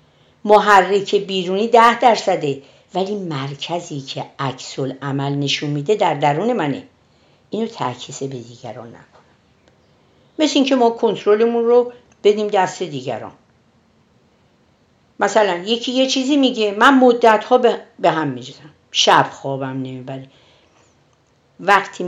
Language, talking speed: Persian, 110 wpm